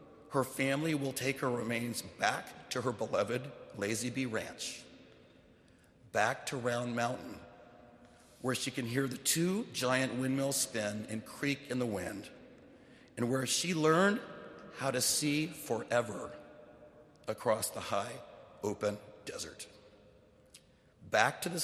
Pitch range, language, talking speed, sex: 110-135 Hz, English, 130 wpm, male